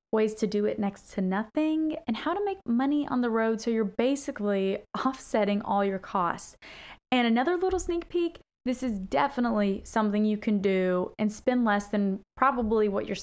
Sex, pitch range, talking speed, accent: female, 205-275 Hz, 185 wpm, American